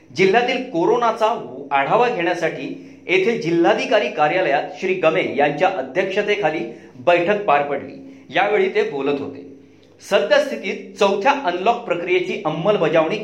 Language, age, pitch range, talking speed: Marathi, 40-59, 170-225 Hz, 105 wpm